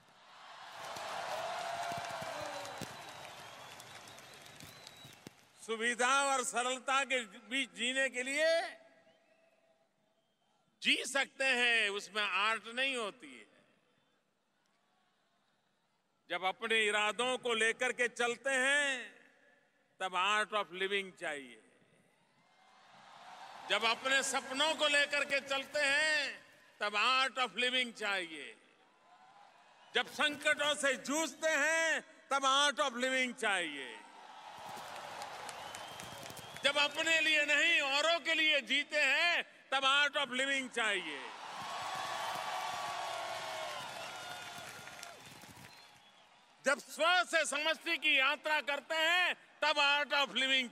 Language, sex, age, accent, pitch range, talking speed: English, male, 50-69, Indian, 245-300 Hz, 90 wpm